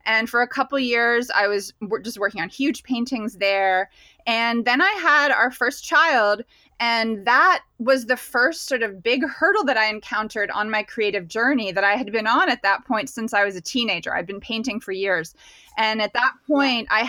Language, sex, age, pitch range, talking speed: English, female, 20-39, 205-255 Hz, 205 wpm